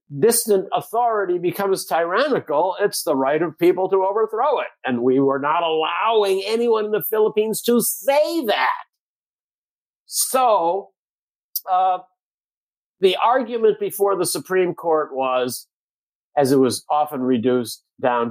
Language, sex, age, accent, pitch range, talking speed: English, male, 50-69, American, 135-205 Hz, 130 wpm